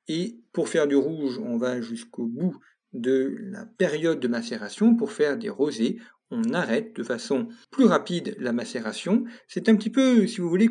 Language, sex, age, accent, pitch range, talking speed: French, male, 50-69, French, 140-225 Hz, 185 wpm